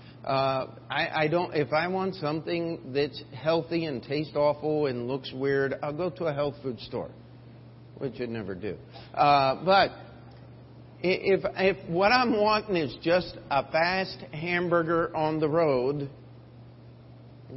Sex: male